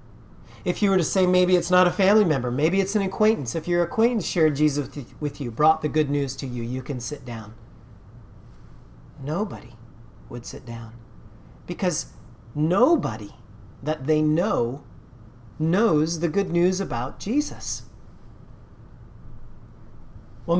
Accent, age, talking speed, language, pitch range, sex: American, 40-59, 140 wpm, English, 115-175 Hz, male